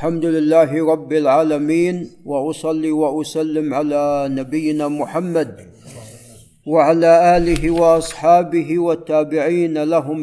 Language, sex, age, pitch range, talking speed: Arabic, male, 50-69, 150-175 Hz, 80 wpm